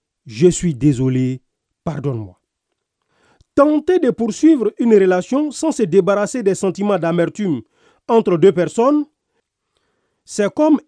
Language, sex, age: French, male, 40-59